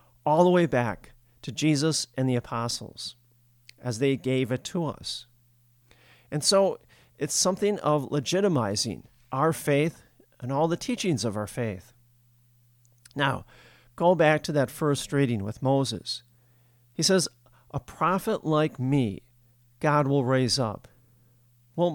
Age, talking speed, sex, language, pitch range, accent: 50-69, 135 wpm, male, English, 120-150 Hz, American